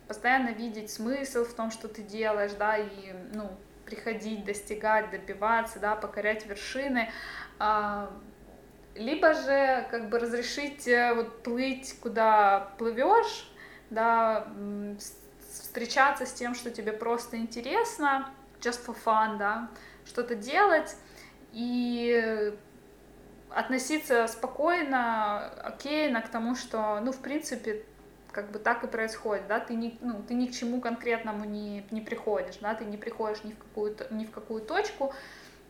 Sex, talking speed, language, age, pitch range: female, 125 wpm, Ukrainian, 20-39, 215-245 Hz